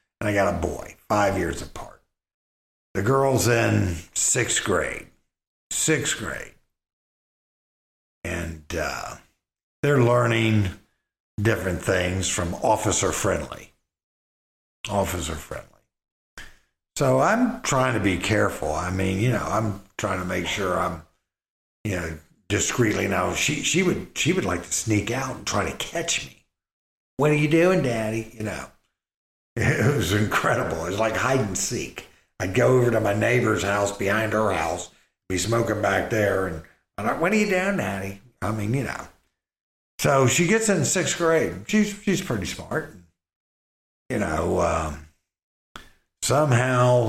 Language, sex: English, male